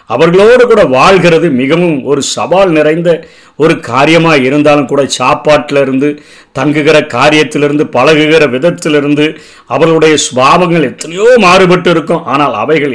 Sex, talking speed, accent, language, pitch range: male, 100 wpm, native, Tamil, 135-170 Hz